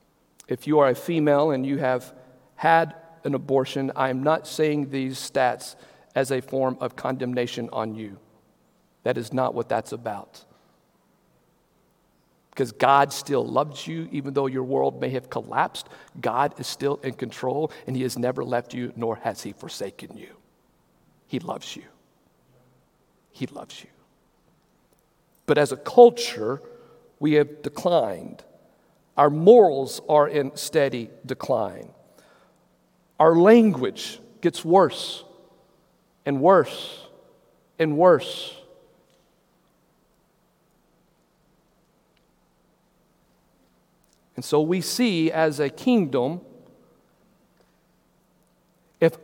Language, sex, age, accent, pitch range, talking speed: English, male, 50-69, American, 130-180 Hz, 115 wpm